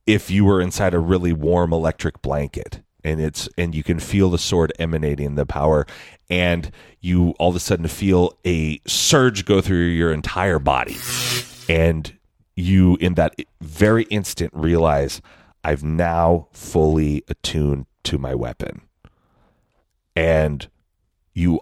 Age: 30-49